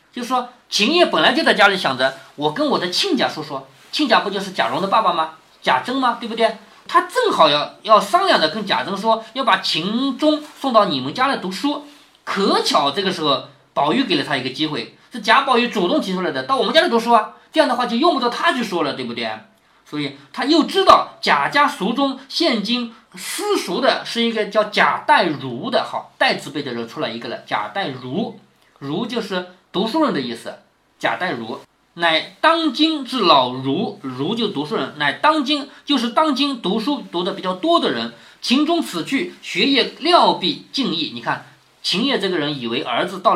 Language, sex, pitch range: Chinese, male, 180-285 Hz